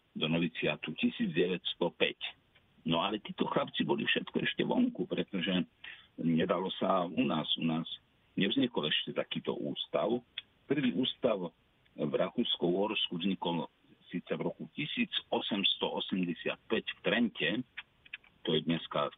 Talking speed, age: 120 wpm, 50-69